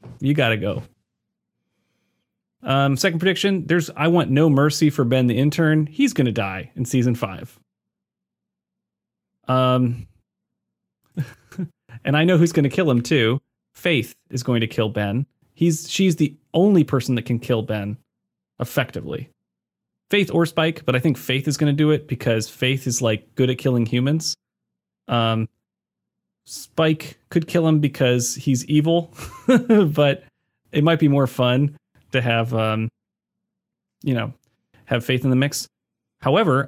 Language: English